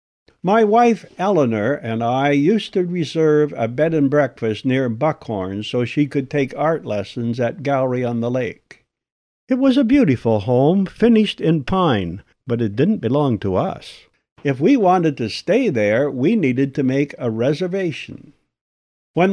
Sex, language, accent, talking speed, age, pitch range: male, English, American, 155 wpm, 60-79, 115-175 Hz